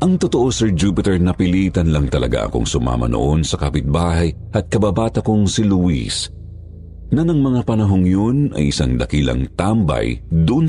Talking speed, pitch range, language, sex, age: 145 wpm, 85-110 Hz, Filipino, male, 50-69